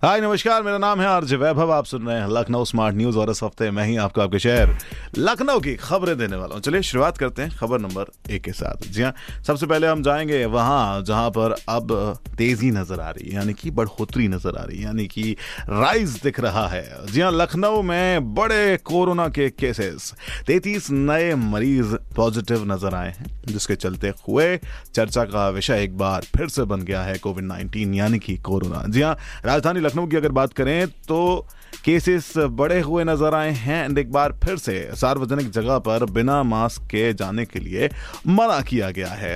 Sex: male